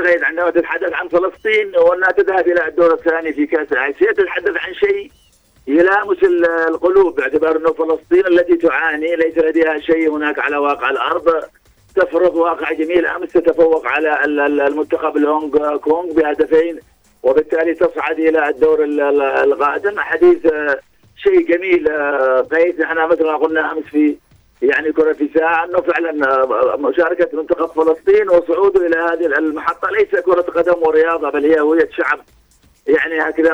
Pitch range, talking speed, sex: 155-175 Hz, 140 wpm, male